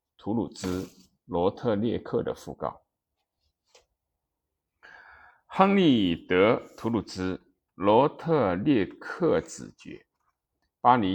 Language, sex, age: Chinese, male, 50-69